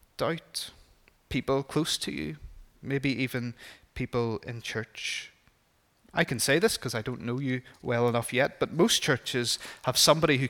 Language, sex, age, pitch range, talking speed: English, male, 30-49, 115-135 Hz, 160 wpm